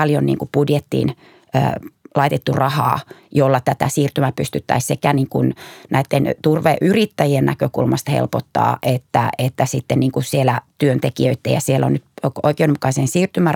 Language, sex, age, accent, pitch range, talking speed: Finnish, female, 30-49, native, 130-155 Hz, 95 wpm